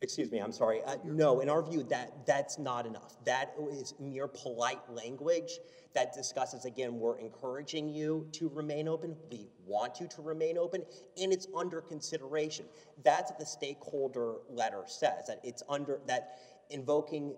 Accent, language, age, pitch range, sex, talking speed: American, English, 30-49, 135-190 Hz, male, 165 wpm